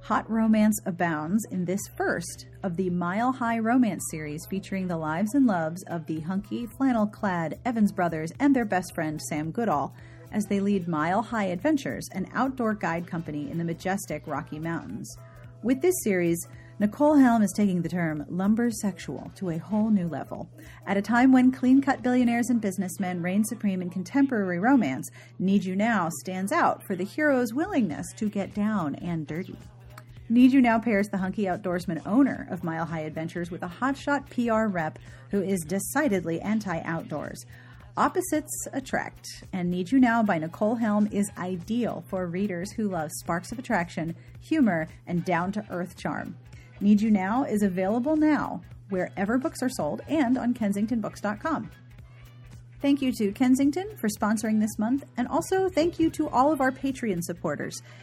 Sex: female